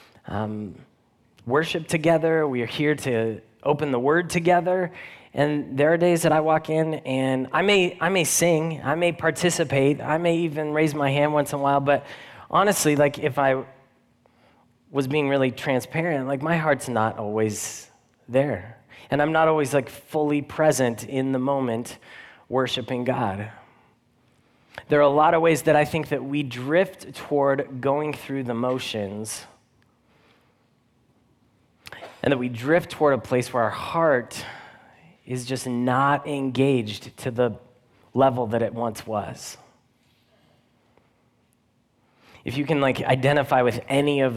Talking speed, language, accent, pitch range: 150 wpm, English, American, 115-145 Hz